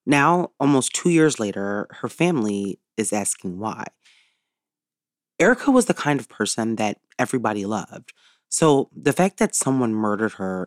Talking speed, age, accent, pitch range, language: 145 wpm, 30-49, American, 105-140 Hz, English